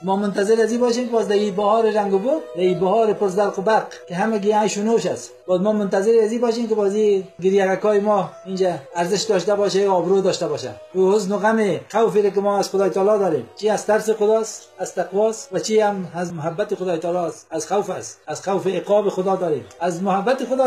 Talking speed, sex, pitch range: 220 wpm, male, 180-225 Hz